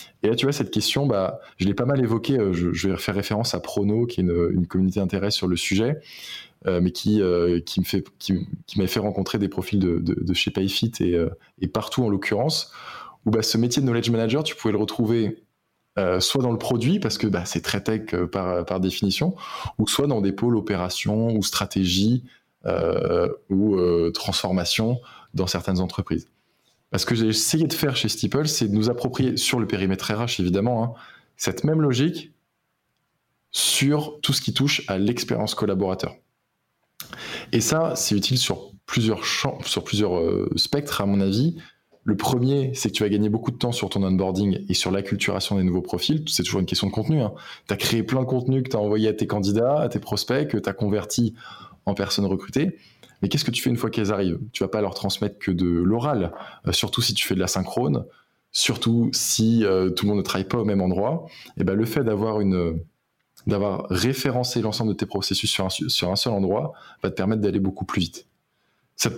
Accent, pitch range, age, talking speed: French, 95-120 Hz, 20-39, 215 wpm